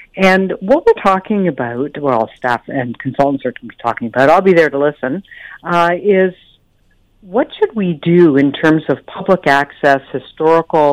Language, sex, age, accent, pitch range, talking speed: English, female, 60-79, American, 135-190 Hz, 160 wpm